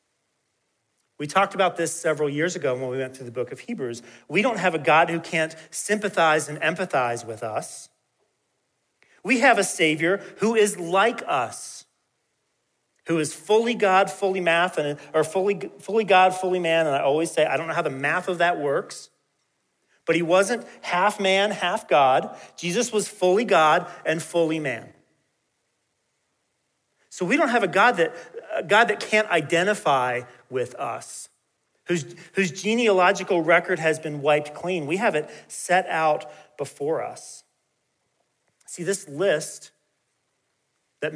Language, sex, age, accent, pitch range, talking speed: English, male, 40-59, American, 140-190 Hz, 155 wpm